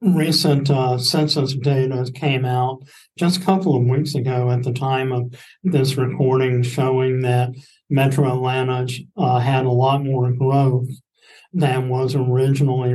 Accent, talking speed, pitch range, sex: American, 145 wpm, 130-145 Hz, male